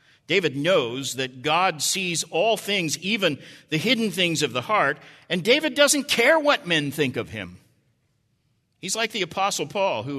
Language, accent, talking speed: English, American, 170 wpm